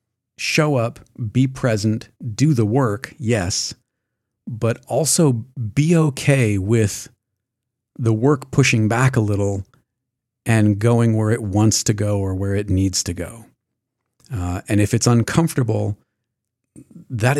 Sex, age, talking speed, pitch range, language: male, 40-59, 130 wpm, 105-125 Hz, English